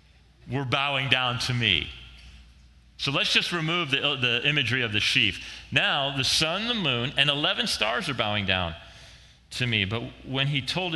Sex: male